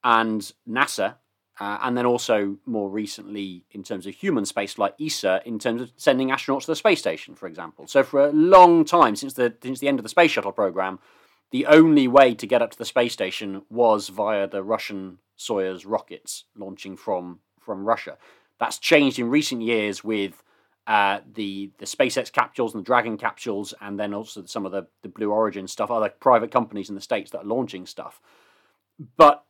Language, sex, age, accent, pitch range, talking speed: English, male, 30-49, British, 100-150 Hz, 195 wpm